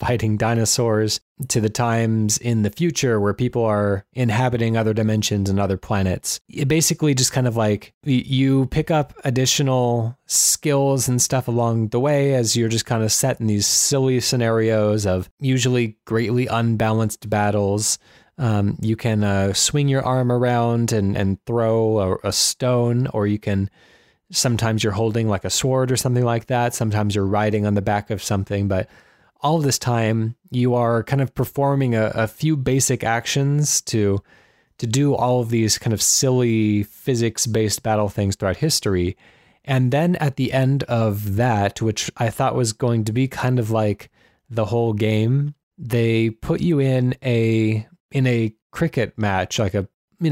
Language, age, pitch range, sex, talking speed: English, 20-39, 110-130 Hz, male, 170 wpm